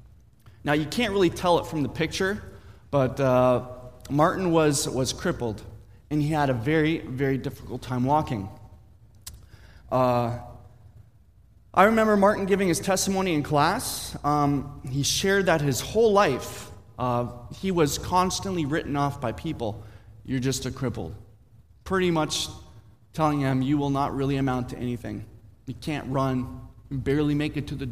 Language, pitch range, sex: English, 110-155 Hz, male